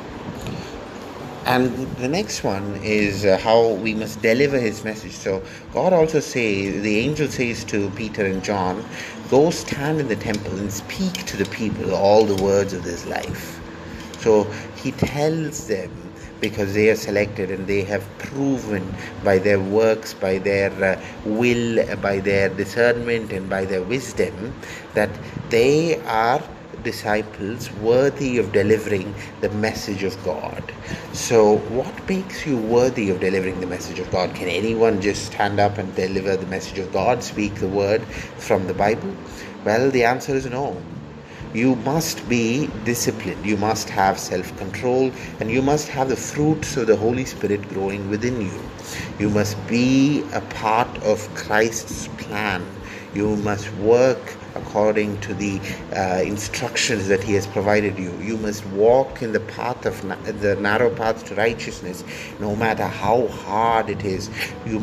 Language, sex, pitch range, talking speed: English, male, 100-115 Hz, 160 wpm